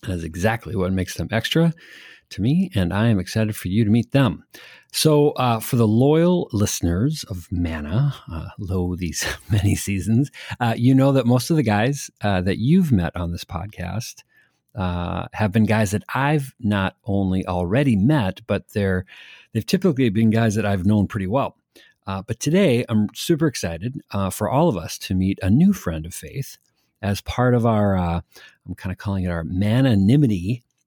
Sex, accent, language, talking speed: male, American, English, 185 wpm